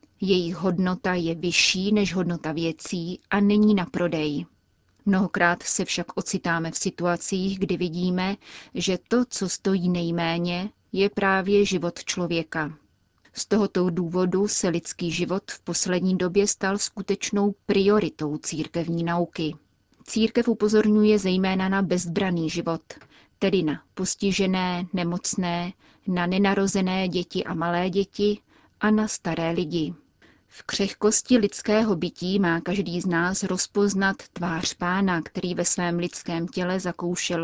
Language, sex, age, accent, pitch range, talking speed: Czech, female, 30-49, native, 175-200 Hz, 125 wpm